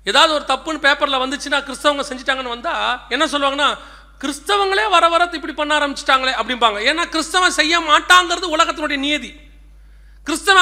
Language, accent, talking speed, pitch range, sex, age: Tamil, native, 135 wpm, 285-355 Hz, male, 40-59